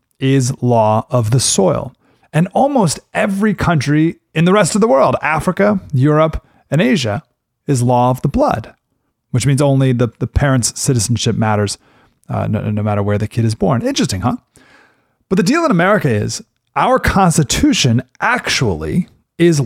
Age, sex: 30-49, male